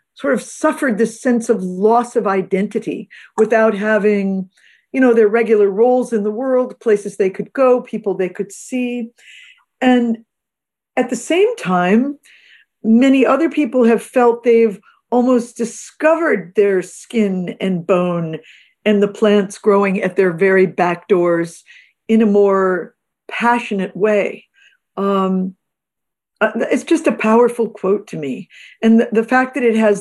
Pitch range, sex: 195-235 Hz, female